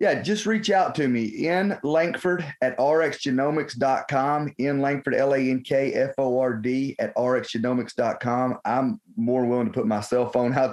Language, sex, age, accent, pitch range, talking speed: English, male, 30-49, American, 125-155 Hz, 175 wpm